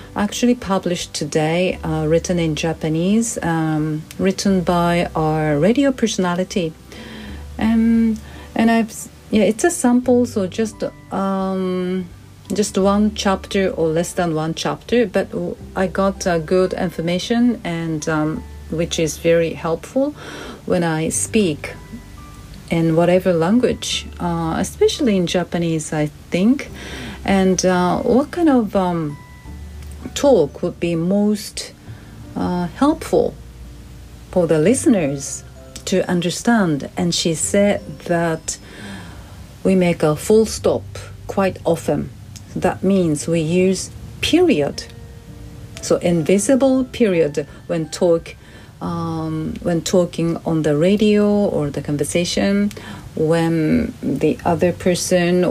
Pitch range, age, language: 155-195 Hz, 40-59, Japanese